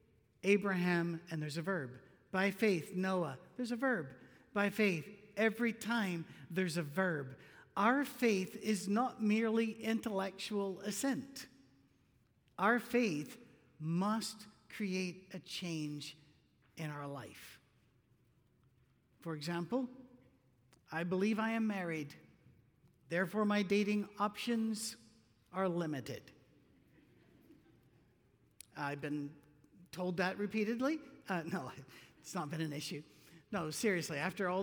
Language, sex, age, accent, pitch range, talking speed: English, male, 50-69, American, 160-215 Hz, 110 wpm